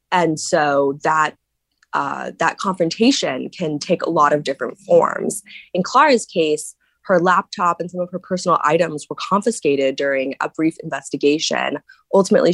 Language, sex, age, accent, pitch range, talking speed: English, female, 20-39, American, 150-185 Hz, 150 wpm